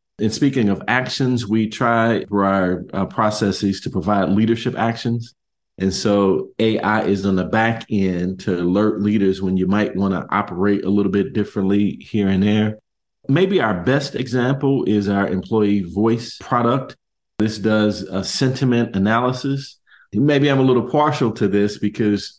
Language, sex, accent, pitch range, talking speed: English, male, American, 100-130 Hz, 160 wpm